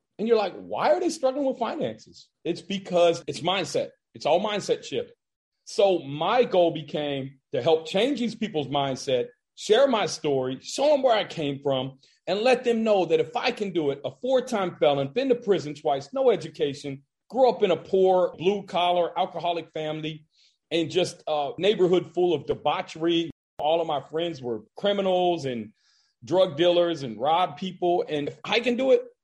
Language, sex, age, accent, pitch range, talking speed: English, male, 40-59, American, 155-220 Hz, 180 wpm